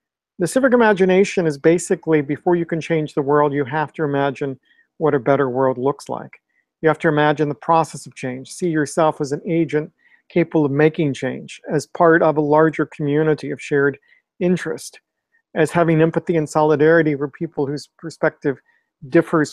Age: 50-69